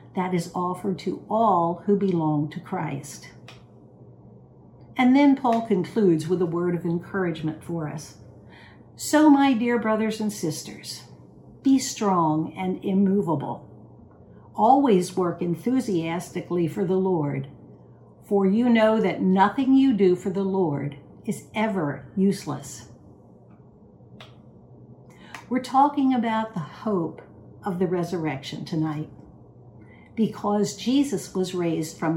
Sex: female